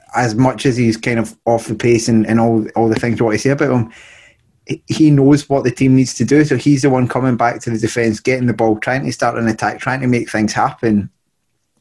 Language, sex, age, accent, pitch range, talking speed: English, male, 20-39, British, 115-135 Hz, 260 wpm